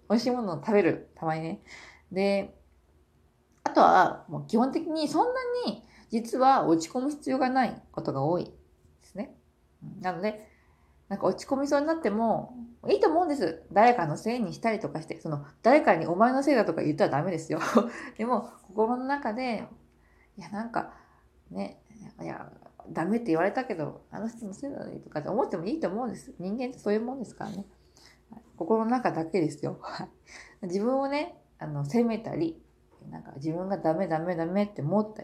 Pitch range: 165-250 Hz